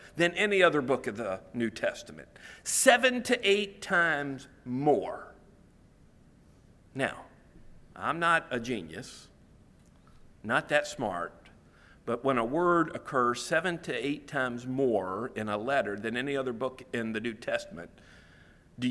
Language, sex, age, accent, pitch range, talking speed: English, male, 50-69, American, 120-170 Hz, 135 wpm